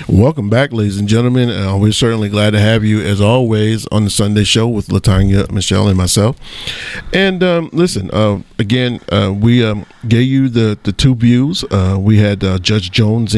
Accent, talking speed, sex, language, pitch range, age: American, 195 wpm, male, English, 105-130 Hz, 40-59